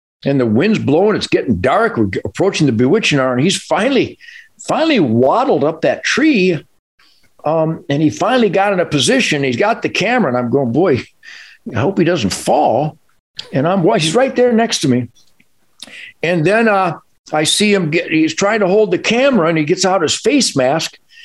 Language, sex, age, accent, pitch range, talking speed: English, male, 60-79, American, 155-255 Hz, 200 wpm